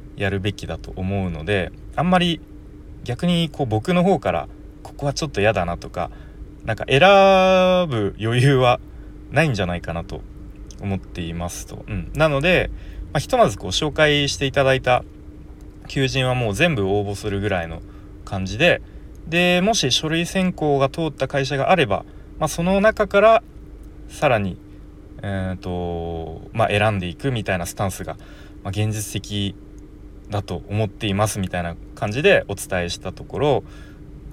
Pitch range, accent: 90-135 Hz, native